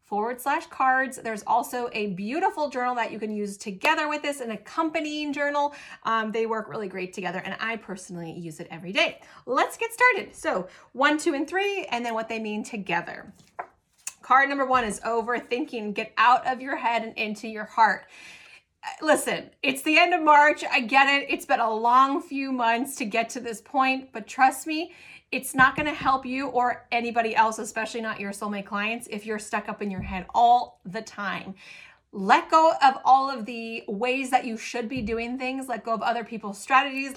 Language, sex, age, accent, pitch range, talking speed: English, female, 30-49, American, 215-270 Hz, 200 wpm